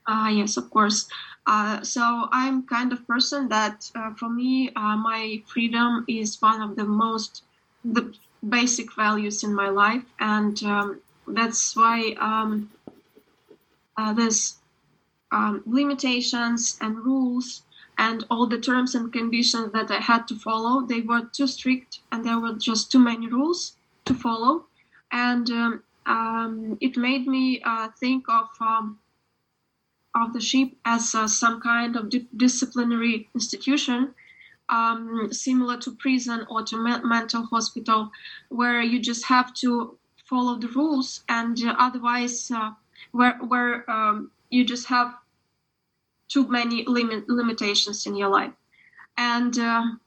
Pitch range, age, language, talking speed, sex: 225-250 Hz, 20-39, English, 140 wpm, female